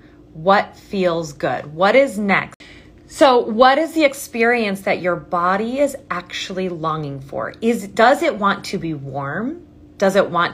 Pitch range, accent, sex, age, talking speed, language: 160-225 Hz, American, female, 30-49, 160 wpm, English